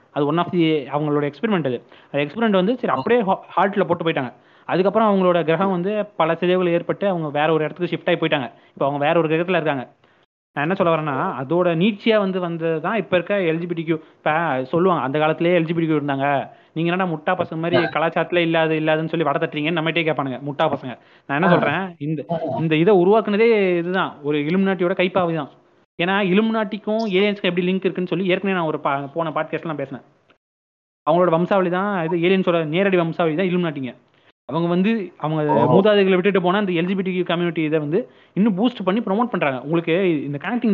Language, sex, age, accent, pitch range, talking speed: Tamil, male, 20-39, native, 155-185 Hz, 180 wpm